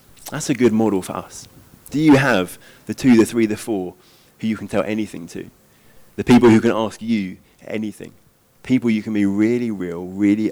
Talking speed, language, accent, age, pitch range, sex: 200 wpm, English, British, 30-49, 105-135 Hz, male